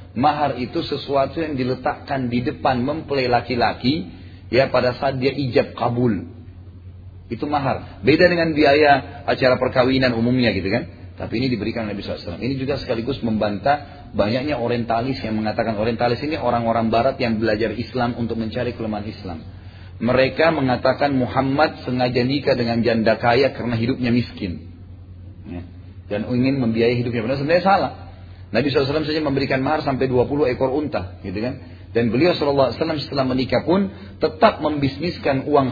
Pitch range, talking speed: 100-135 Hz, 150 wpm